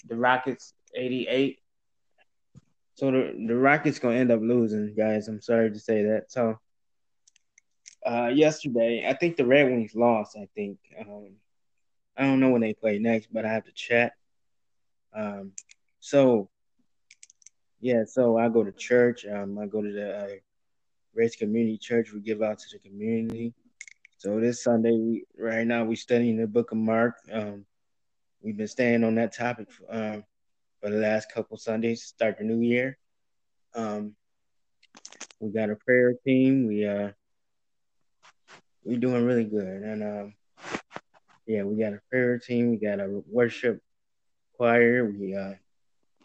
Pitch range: 105-120 Hz